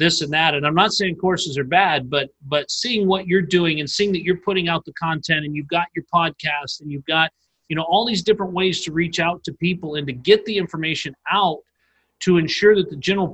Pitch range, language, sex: 150-190 Hz, English, male